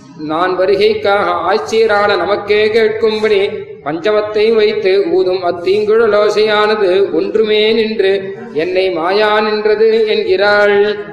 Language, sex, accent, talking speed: Tamil, male, native, 85 wpm